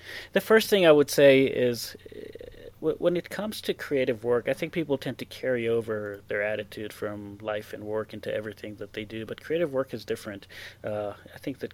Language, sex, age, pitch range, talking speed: English, male, 30-49, 105-125 Hz, 205 wpm